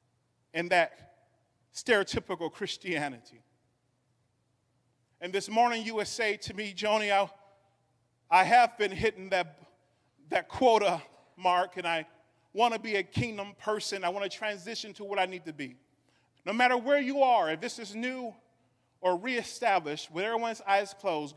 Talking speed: 150 wpm